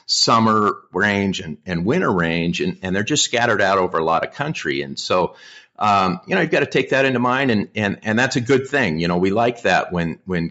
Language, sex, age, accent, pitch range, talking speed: English, male, 50-69, American, 85-105 Hz, 245 wpm